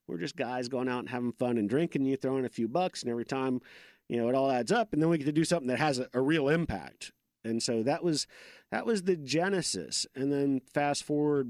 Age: 40-59